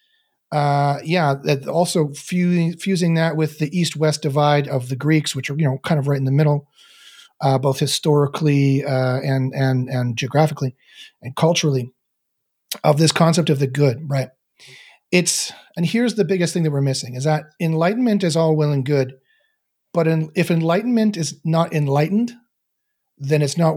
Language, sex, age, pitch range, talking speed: English, male, 40-59, 135-175 Hz, 165 wpm